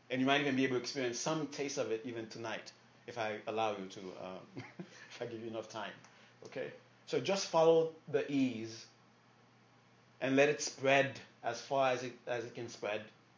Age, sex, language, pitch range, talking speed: 30-49, male, English, 110-135 Hz, 195 wpm